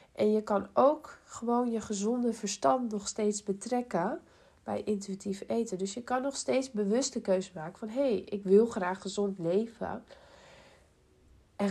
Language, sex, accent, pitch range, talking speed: Dutch, female, Dutch, 185-225 Hz, 165 wpm